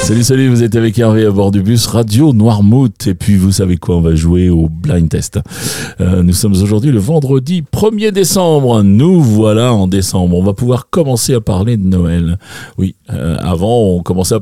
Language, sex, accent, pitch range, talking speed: French, male, French, 100-145 Hz, 200 wpm